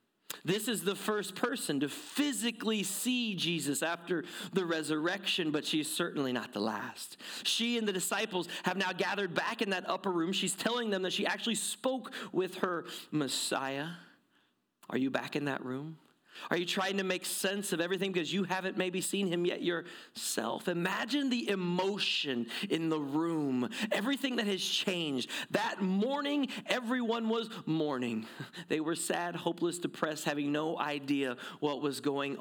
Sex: male